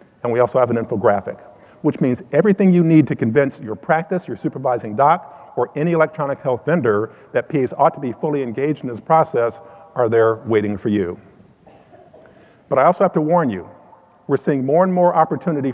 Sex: male